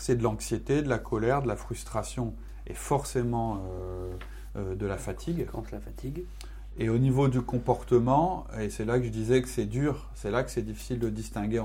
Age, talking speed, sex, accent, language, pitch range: 30-49, 190 wpm, male, French, French, 105-130 Hz